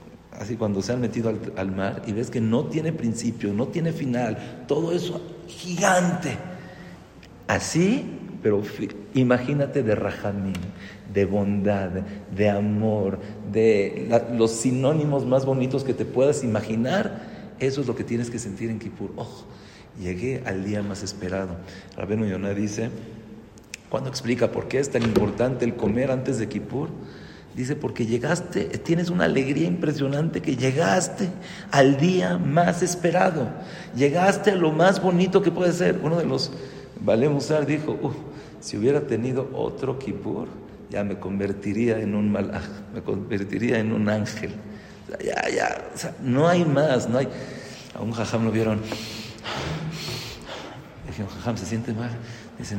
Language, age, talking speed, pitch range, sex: English, 50-69, 155 wpm, 105-140 Hz, male